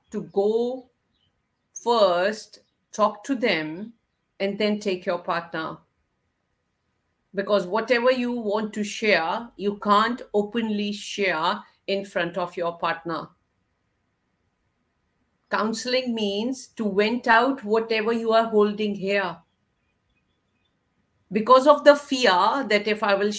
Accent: Indian